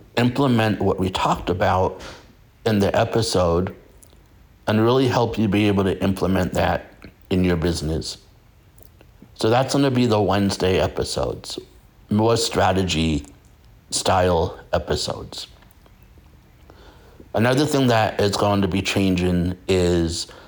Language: English